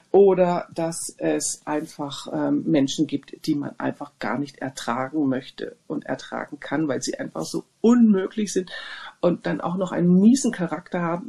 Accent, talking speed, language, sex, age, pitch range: German, 165 wpm, German, female, 50-69, 145-185 Hz